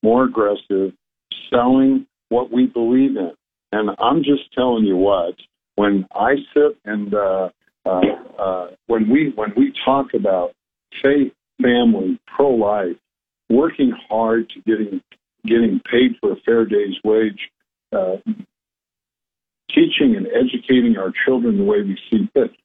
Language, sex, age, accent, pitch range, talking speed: English, male, 50-69, American, 105-140 Hz, 140 wpm